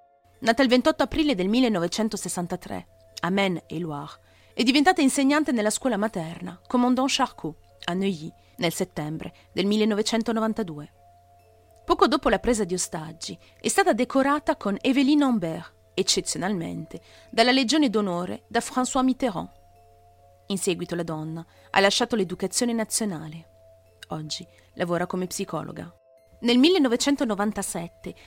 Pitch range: 165-250 Hz